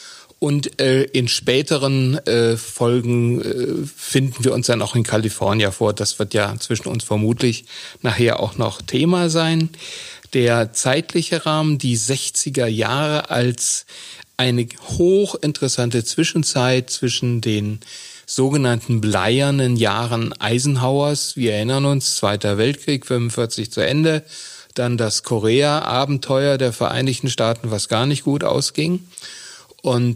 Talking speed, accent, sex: 125 wpm, German, male